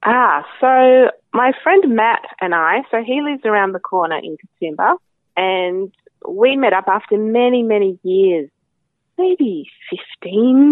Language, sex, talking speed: English, female, 140 wpm